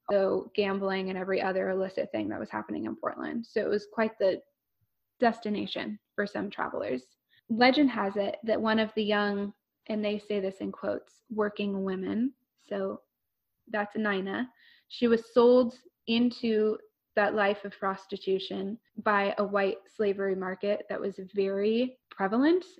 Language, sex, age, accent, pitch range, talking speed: English, female, 10-29, American, 200-230 Hz, 150 wpm